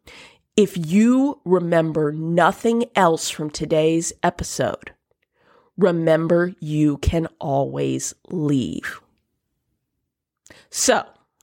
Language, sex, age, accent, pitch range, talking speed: English, female, 40-59, American, 165-240 Hz, 75 wpm